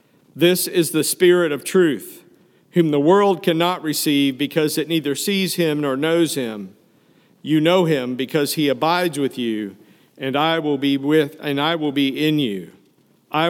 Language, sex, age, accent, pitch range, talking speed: English, male, 50-69, American, 150-180 Hz, 175 wpm